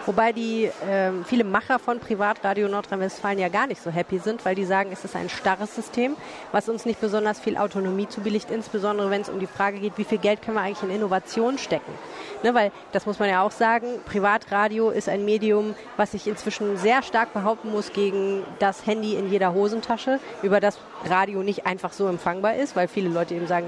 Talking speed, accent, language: 210 wpm, German, German